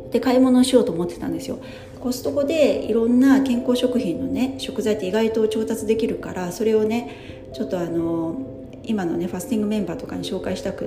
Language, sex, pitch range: Japanese, female, 180-255 Hz